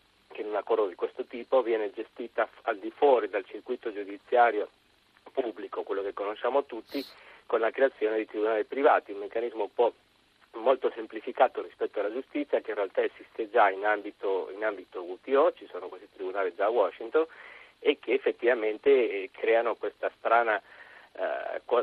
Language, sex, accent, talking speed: Italian, male, native, 160 wpm